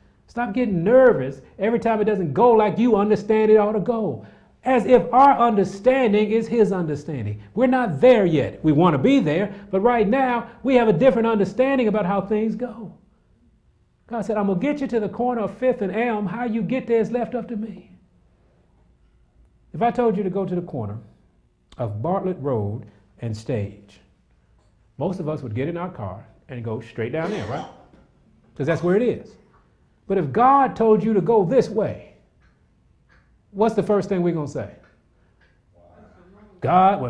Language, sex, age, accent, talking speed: English, male, 40-59, American, 190 wpm